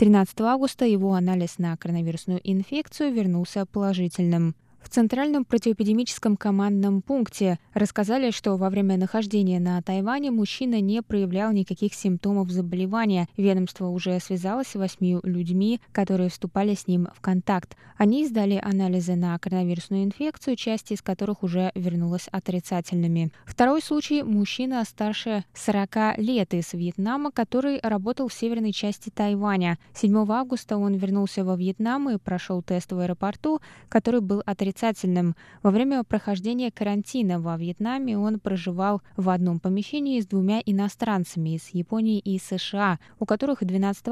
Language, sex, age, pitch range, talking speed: Russian, female, 20-39, 185-225 Hz, 135 wpm